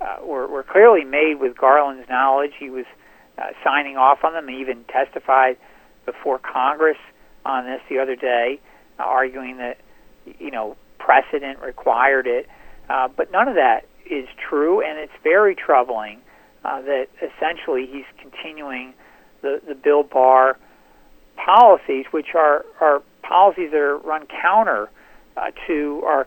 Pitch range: 135-170 Hz